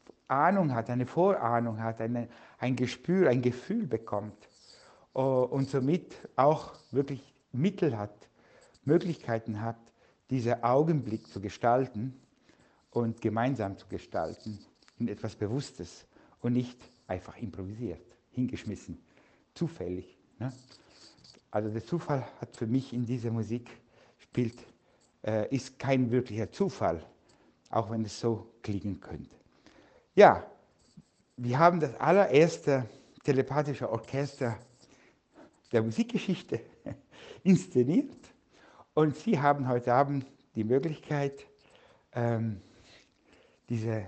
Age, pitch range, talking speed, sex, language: 60-79, 115-145 Hz, 100 wpm, male, German